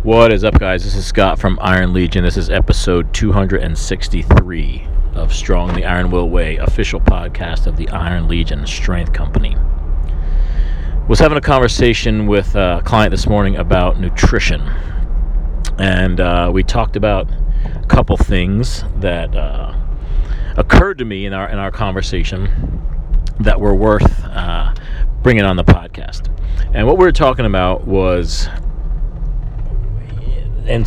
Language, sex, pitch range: English, male, 80-105 Hz